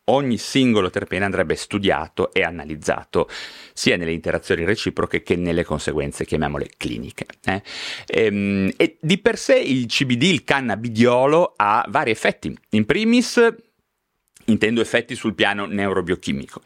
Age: 30-49